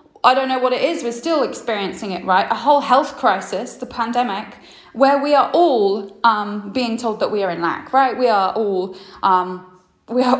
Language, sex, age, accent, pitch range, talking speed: English, female, 10-29, British, 200-270 Hz, 210 wpm